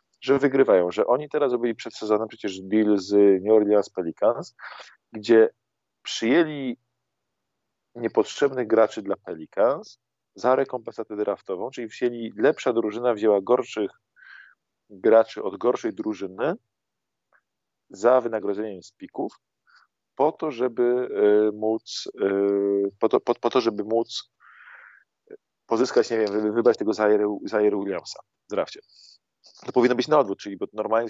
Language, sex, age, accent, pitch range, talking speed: Polish, male, 40-59, native, 105-125 Hz, 120 wpm